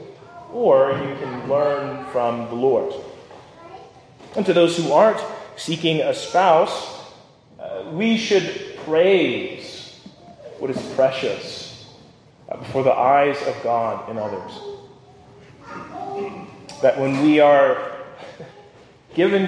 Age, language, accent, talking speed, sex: 30-49, English, American, 100 wpm, male